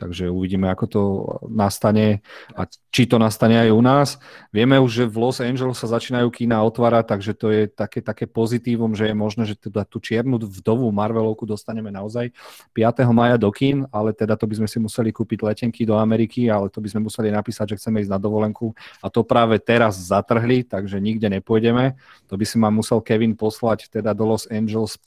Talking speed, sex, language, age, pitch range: 200 wpm, male, Slovak, 40-59, 110-120 Hz